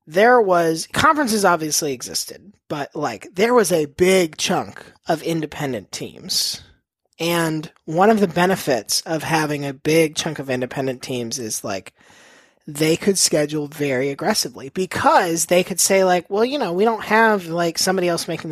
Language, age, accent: English, 30-49, American